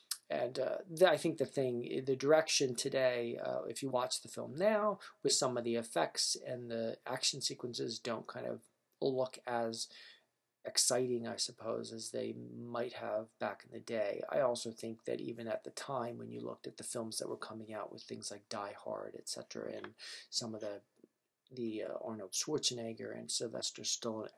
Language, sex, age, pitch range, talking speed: English, male, 40-59, 115-125 Hz, 185 wpm